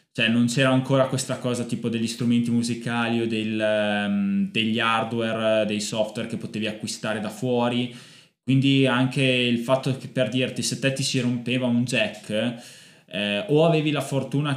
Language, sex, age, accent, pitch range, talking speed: Italian, male, 20-39, native, 110-135 Hz, 160 wpm